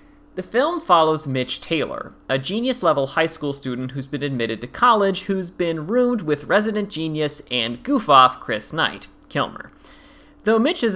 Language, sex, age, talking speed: English, male, 30-49, 160 wpm